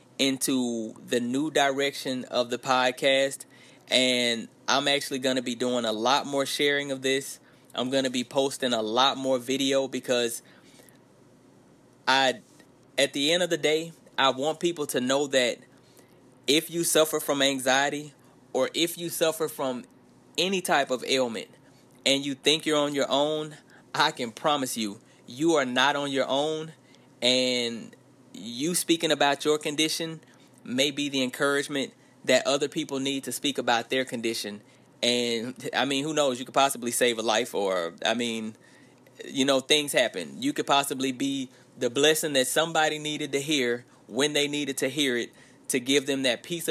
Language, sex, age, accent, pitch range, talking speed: English, male, 20-39, American, 125-145 Hz, 170 wpm